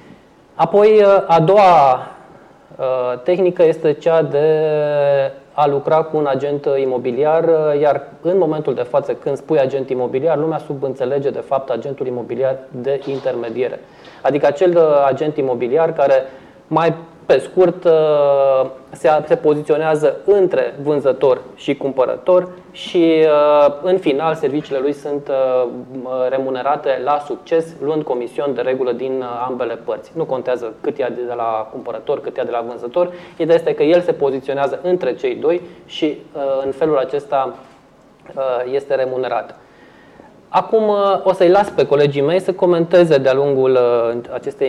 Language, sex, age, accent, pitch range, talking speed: Romanian, male, 20-39, native, 130-165 Hz, 130 wpm